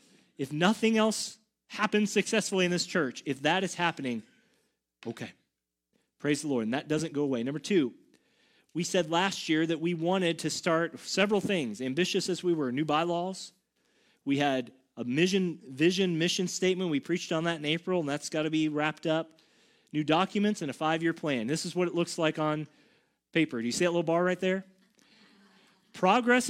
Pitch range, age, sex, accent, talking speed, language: 135-180 Hz, 30-49, male, American, 190 wpm, English